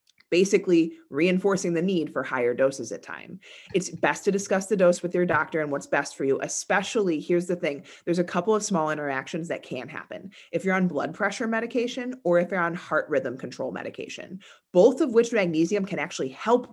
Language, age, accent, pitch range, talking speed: English, 30-49, American, 155-210 Hz, 205 wpm